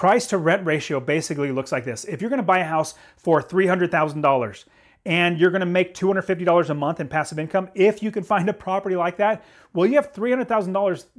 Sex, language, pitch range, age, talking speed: male, English, 155-195 Hz, 30-49, 205 wpm